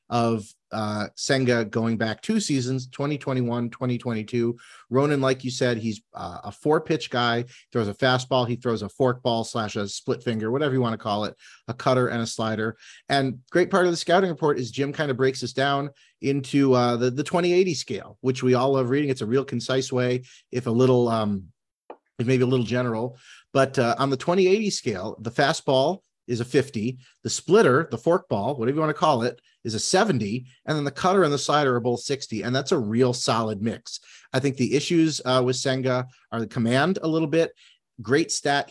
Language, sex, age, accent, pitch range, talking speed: English, male, 40-59, American, 120-140 Hz, 210 wpm